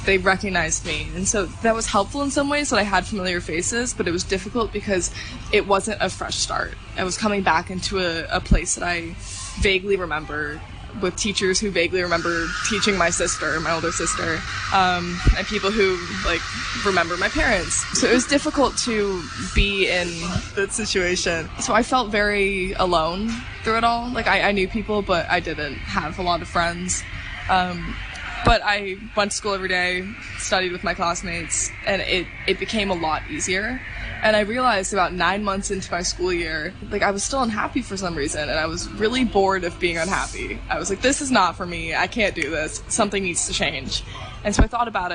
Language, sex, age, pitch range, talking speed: English, female, 20-39, 175-210 Hz, 200 wpm